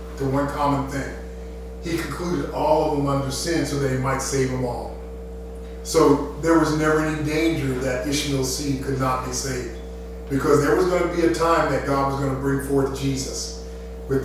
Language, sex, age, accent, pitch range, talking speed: English, male, 40-59, American, 125-155 Hz, 200 wpm